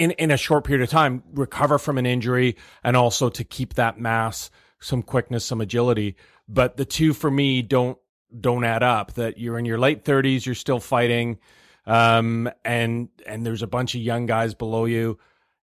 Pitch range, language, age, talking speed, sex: 115-140 Hz, English, 30-49, 190 wpm, male